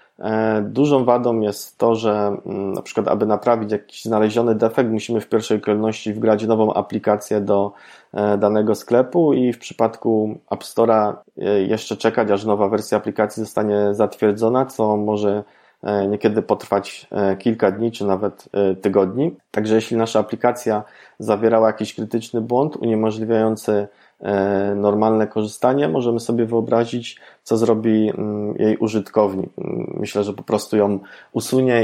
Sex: male